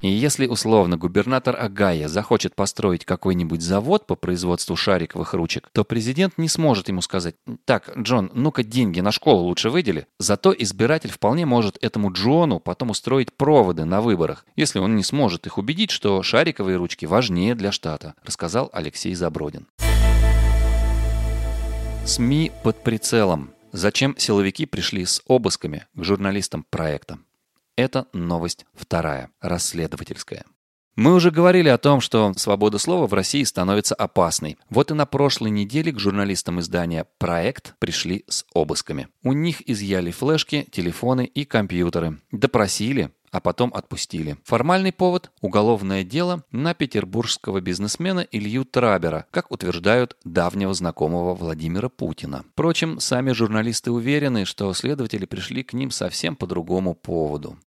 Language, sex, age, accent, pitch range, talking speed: Russian, male, 30-49, native, 90-130 Hz, 135 wpm